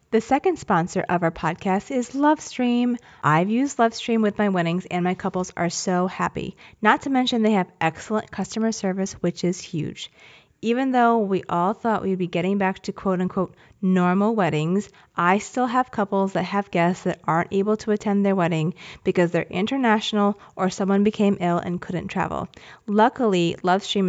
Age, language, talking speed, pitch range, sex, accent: 30-49, English, 180 wpm, 175-215 Hz, female, American